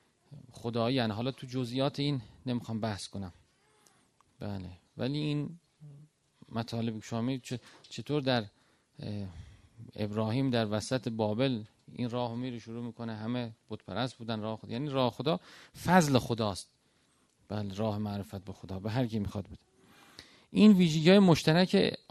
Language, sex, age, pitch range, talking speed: Persian, male, 40-59, 110-145 Hz, 130 wpm